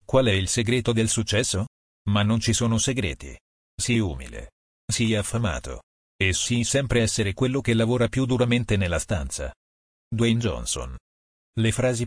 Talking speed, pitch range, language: 150 wpm, 100-120 Hz, Italian